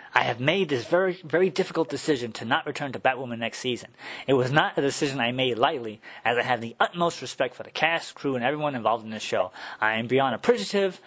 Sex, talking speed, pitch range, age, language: male, 235 wpm, 125-170 Hz, 20-39, English